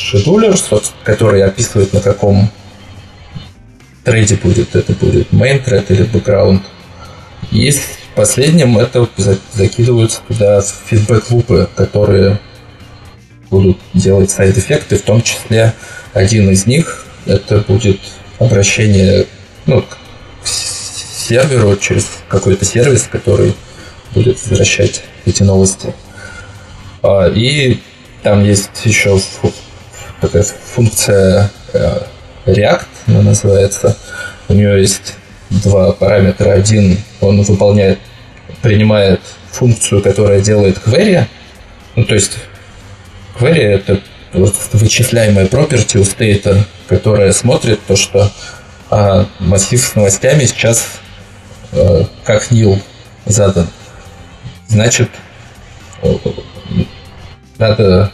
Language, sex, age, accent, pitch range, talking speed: Russian, male, 20-39, native, 95-115 Hz, 95 wpm